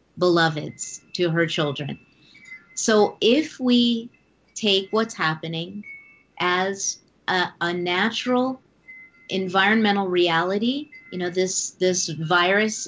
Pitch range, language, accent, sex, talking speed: 160-195 Hz, English, American, female, 100 wpm